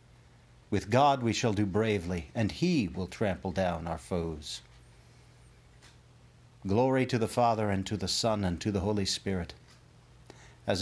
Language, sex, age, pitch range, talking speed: English, male, 50-69, 85-115 Hz, 150 wpm